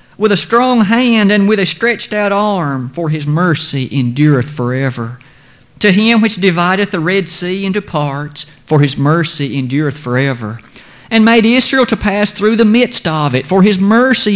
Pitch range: 135-190 Hz